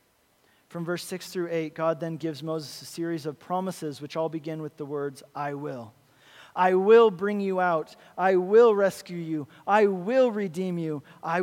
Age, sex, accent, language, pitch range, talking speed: 40-59, male, American, English, 150-185 Hz, 185 wpm